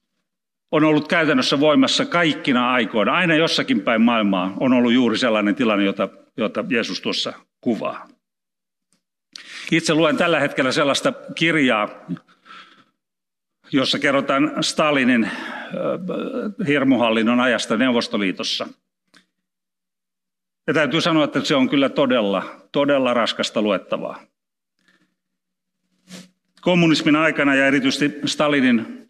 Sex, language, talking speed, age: male, Finnish, 100 wpm, 50-69